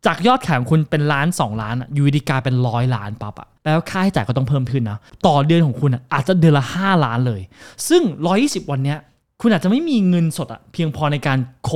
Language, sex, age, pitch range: Thai, male, 20-39, 130-195 Hz